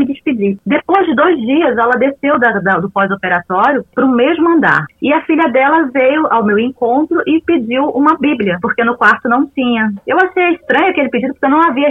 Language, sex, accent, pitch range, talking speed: Portuguese, female, Brazilian, 200-270 Hz, 205 wpm